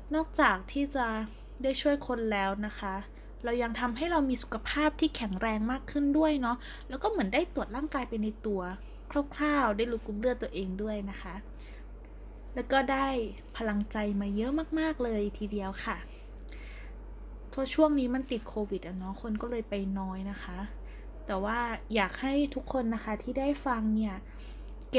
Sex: female